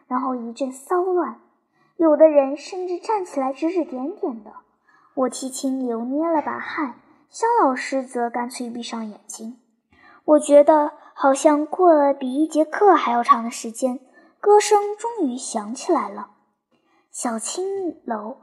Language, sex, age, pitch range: Chinese, male, 10-29, 255-355 Hz